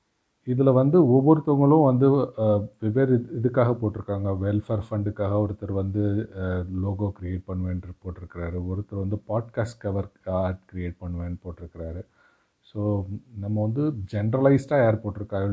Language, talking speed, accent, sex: Tamil, 110 wpm, native, male